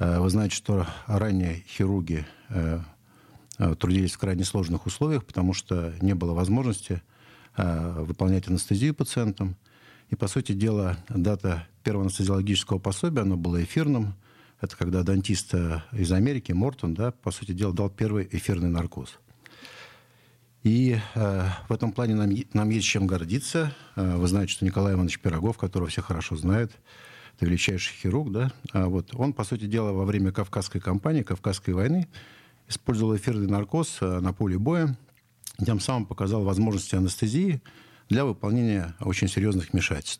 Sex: male